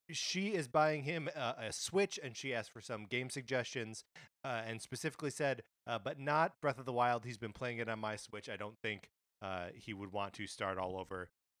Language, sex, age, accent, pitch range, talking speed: English, male, 30-49, American, 105-150 Hz, 220 wpm